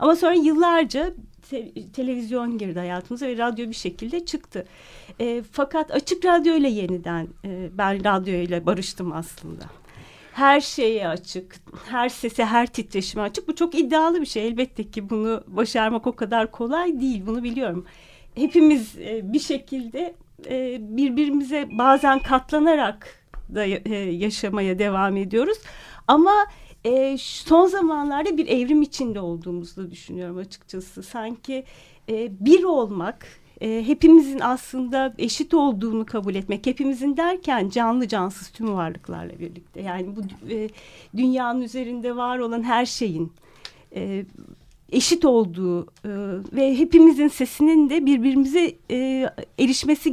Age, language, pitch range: 40-59, Turkish, 195-285 Hz